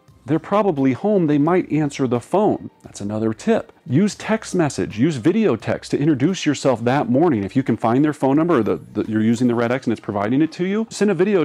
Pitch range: 110-155 Hz